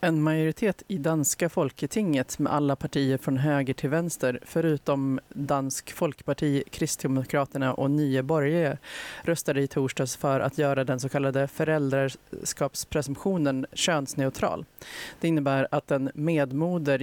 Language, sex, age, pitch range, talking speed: Swedish, female, 30-49, 130-155 Hz, 120 wpm